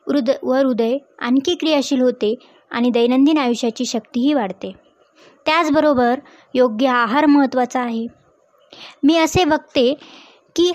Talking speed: 110 wpm